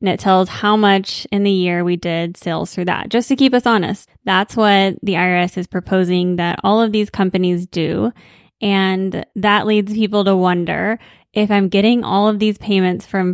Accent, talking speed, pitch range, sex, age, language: American, 200 wpm, 180-210 Hz, female, 20-39, English